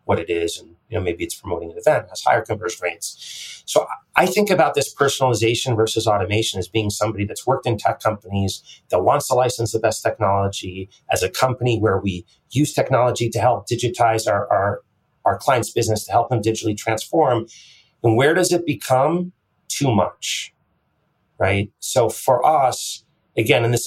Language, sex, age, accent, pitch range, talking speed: English, male, 30-49, American, 110-135 Hz, 180 wpm